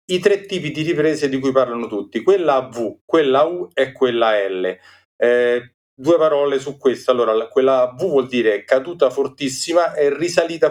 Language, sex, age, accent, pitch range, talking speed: Italian, male, 40-59, native, 120-155 Hz, 170 wpm